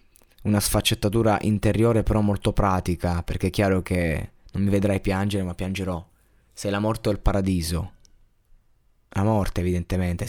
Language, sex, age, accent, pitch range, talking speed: Italian, male, 20-39, native, 90-110 Hz, 145 wpm